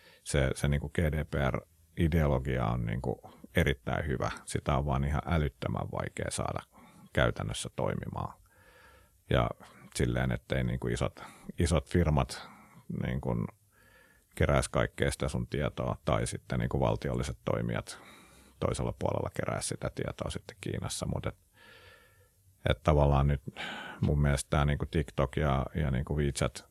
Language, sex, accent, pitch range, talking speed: Finnish, male, native, 65-70 Hz, 135 wpm